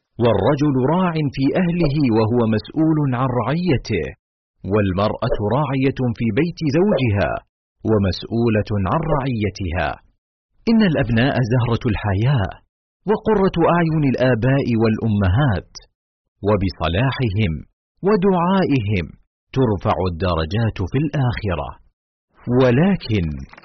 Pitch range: 105-150 Hz